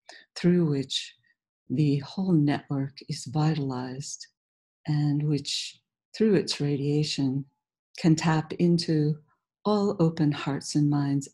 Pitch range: 145-170 Hz